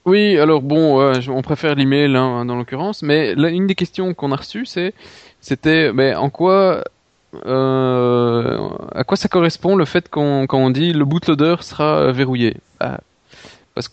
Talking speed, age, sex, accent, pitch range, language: 160 wpm, 20-39, male, French, 120-150 Hz, French